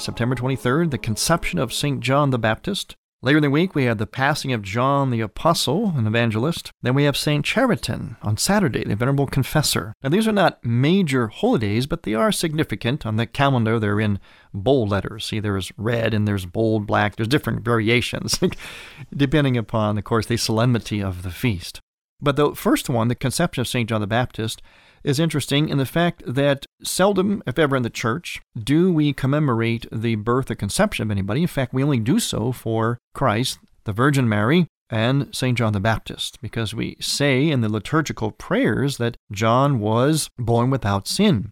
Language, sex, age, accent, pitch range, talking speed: English, male, 40-59, American, 110-145 Hz, 190 wpm